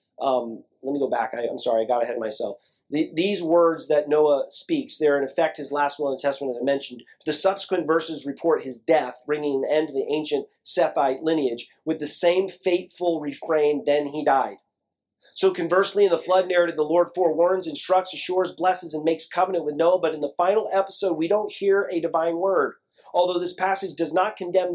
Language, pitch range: English, 140-185 Hz